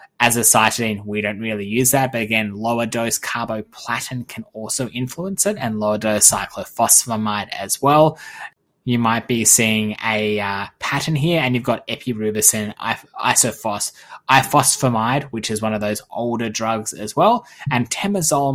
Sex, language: male, English